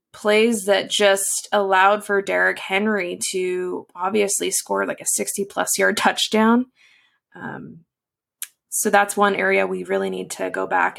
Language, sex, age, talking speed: English, female, 20-39, 145 wpm